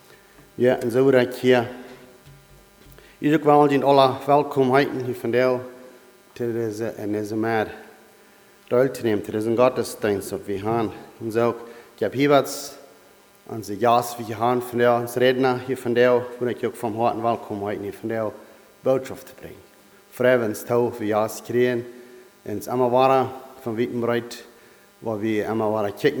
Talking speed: 105 wpm